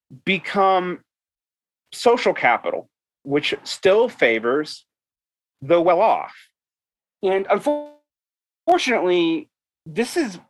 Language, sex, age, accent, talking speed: English, male, 30-49, American, 70 wpm